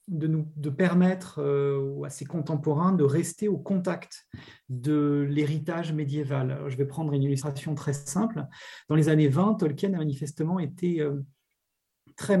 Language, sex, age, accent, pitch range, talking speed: French, male, 40-59, French, 145-180 Hz, 140 wpm